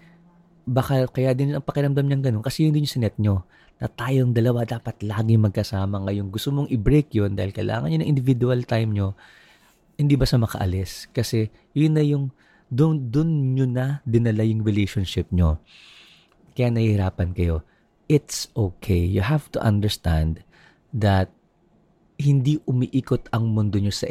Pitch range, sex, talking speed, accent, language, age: 100-135 Hz, male, 155 wpm, native, Filipino, 30-49